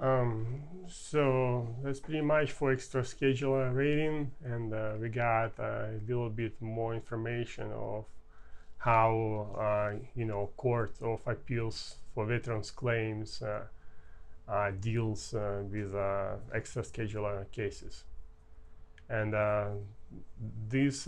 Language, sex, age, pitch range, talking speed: English, male, 30-49, 110-130 Hz, 120 wpm